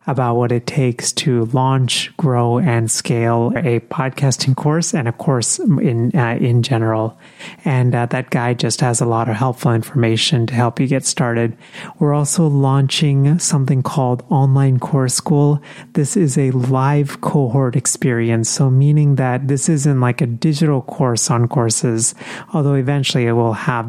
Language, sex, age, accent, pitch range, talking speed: English, male, 30-49, American, 120-145 Hz, 165 wpm